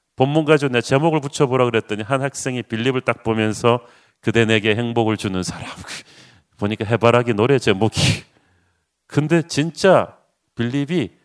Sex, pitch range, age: male, 110-140 Hz, 40-59